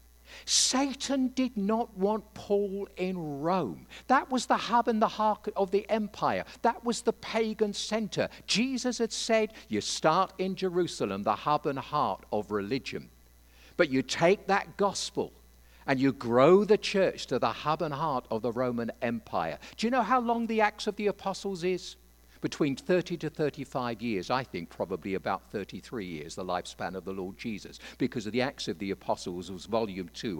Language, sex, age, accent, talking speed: English, male, 50-69, British, 180 wpm